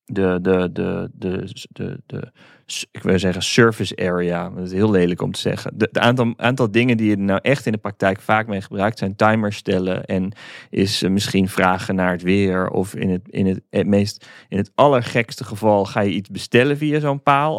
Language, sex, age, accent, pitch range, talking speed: Dutch, male, 30-49, Dutch, 95-120 Hz, 210 wpm